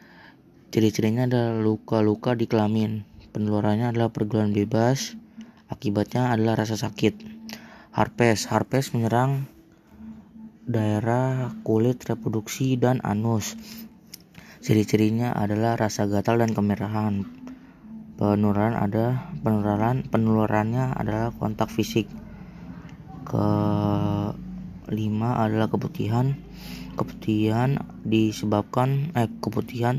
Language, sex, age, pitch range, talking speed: Indonesian, female, 20-39, 105-130 Hz, 85 wpm